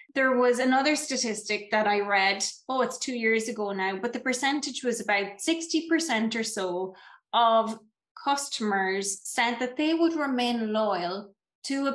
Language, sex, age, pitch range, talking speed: English, female, 20-39, 210-280 Hz, 155 wpm